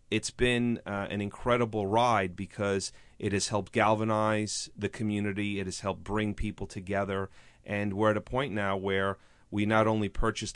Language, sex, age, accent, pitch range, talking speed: English, male, 30-49, American, 95-115 Hz, 170 wpm